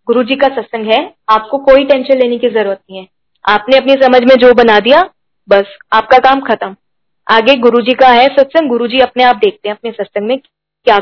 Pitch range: 225-275 Hz